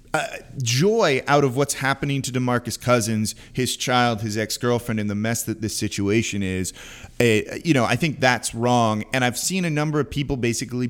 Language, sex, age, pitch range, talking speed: English, male, 30-49, 110-135 Hz, 195 wpm